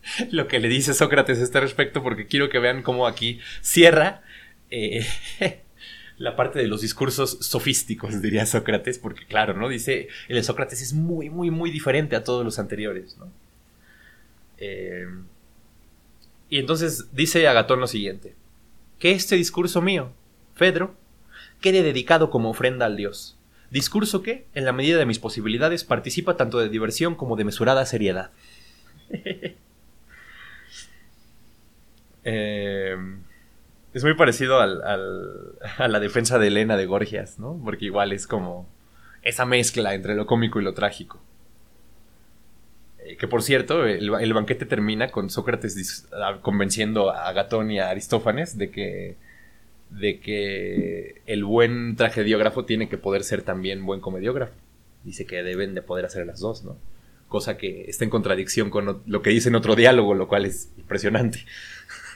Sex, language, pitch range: male, Spanish, 105-135 Hz